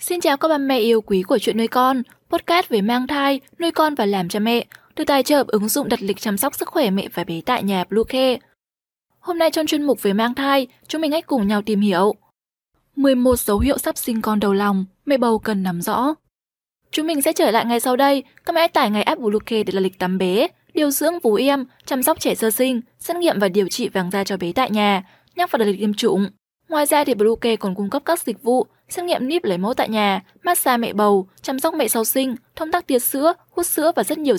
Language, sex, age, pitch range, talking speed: Vietnamese, female, 10-29, 210-290 Hz, 255 wpm